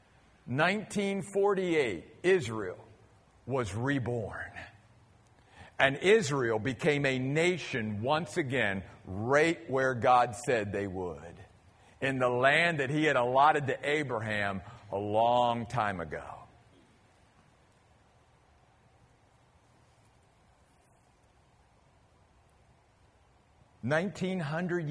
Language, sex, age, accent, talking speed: English, male, 50-69, American, 75 wpm